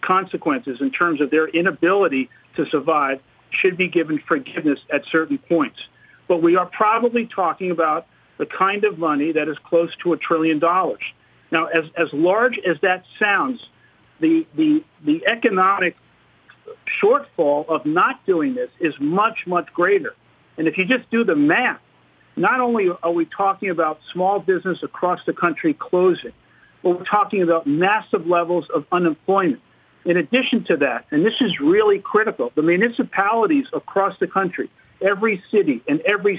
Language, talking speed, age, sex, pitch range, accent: English, 160 wpm, 50-69, male, 170-240 Hz, American